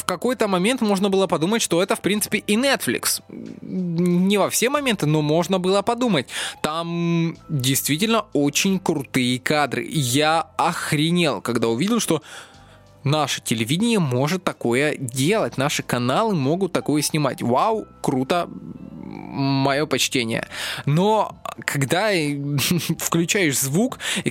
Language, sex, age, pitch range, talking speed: Russian, male, 20-39, 145-190 Hz, 120 wpm